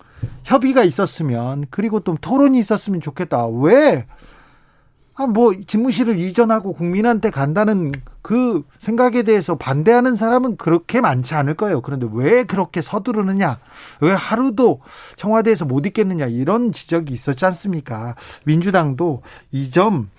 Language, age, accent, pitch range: Korean, 40-59, native, 145-210 Hz